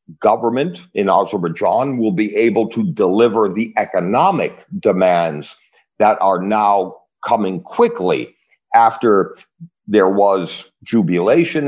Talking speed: 105 wpm